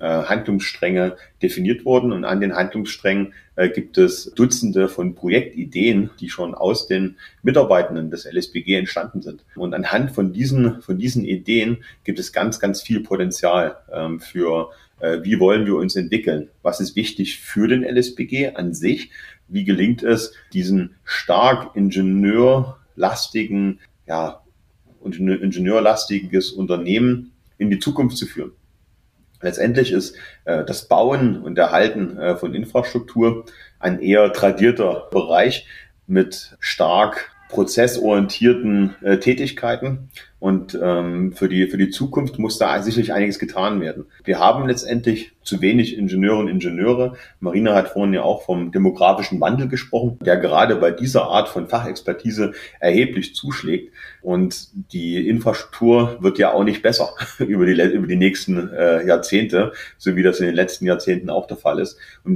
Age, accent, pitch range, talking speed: 40-59, German, 95-120 Hz, 140 wpm